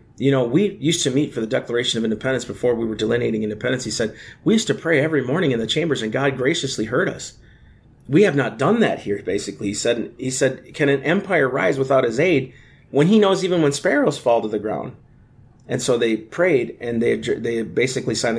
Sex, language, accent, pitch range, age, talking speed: male, English, American, 110-135 Hz, 30-49, 225 wpm